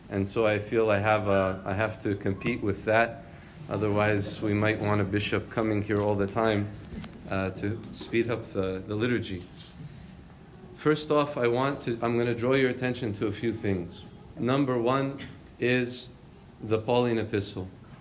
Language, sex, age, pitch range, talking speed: English, male, 40-59, 105-130 Hz, 175 wpm